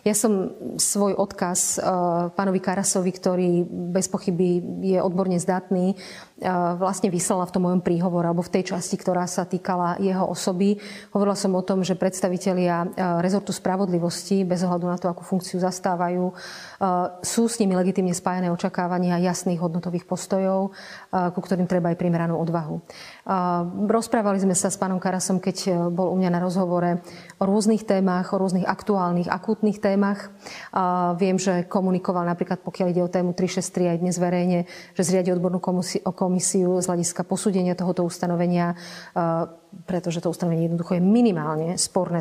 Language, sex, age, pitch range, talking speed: Slovak, female, 30-49, 175-195 Hz, 150 wpm